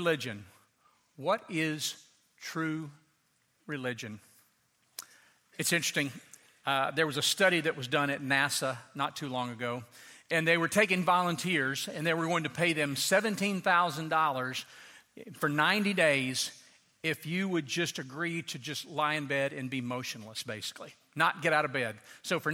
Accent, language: American, English